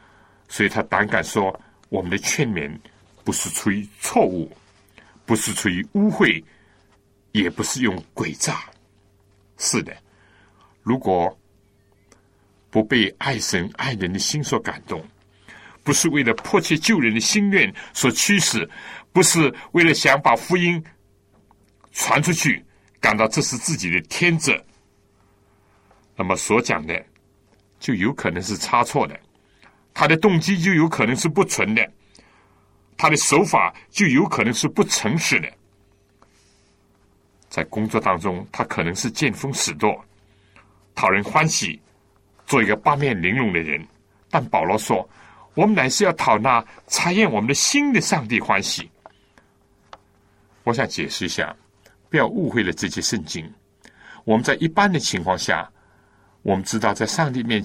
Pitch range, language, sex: 100-145 Hz, Chinese, male